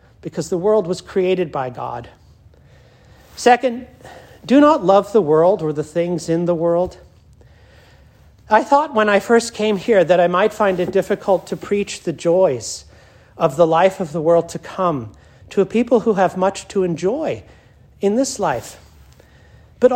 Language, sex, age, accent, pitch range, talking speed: English, male, 40-59, American, 165-215 Hz, 170 wpm